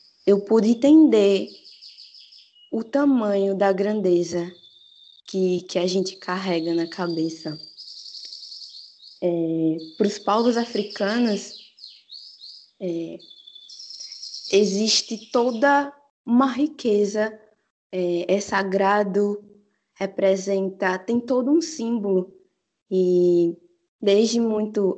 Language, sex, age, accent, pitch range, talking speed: Portuguese, female, 20-39, Brazilian, 185-215 Hz, 85 wpm